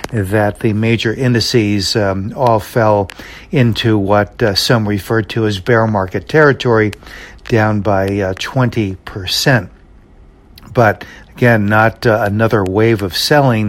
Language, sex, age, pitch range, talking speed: English, male, 60-79, 105-135 Hz, 125 wpm